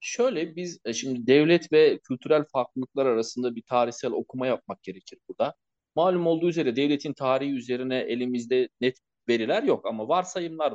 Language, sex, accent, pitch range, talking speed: Turkish, male, native, 115-150 Hz, 145 wpm